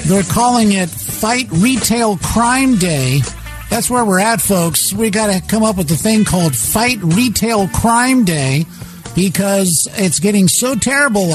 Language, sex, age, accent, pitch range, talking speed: English, male, 50-69, American, 155-210 Hz, 160 wpm